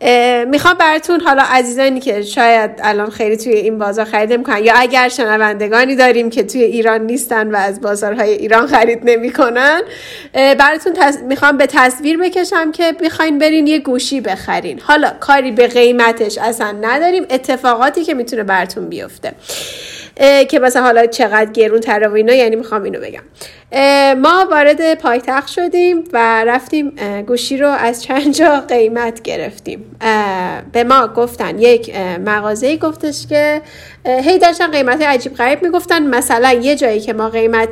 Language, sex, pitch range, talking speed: Persian, female, 225-295 Hz, 145 wpm